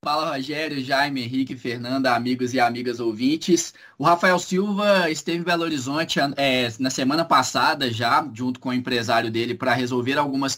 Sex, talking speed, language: male, 160 wpm, Portuguese